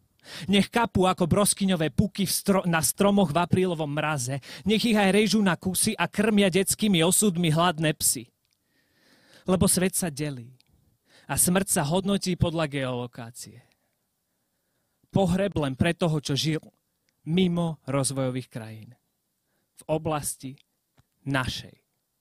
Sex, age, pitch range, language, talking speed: male, 30-49, 130-185 Hz, Slovak, 120 wpm